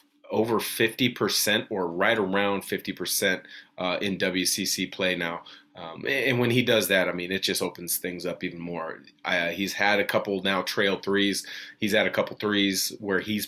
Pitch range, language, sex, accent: 90-105 Hz, English, male, American